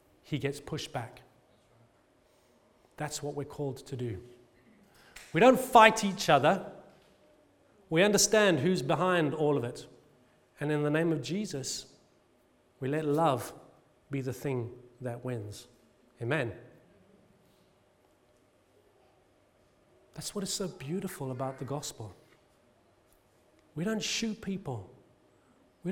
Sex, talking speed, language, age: male, 115 wpm, English, 40-59